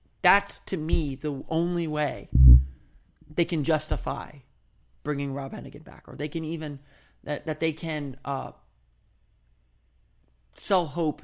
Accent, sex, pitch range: American, male, 125-165 Hz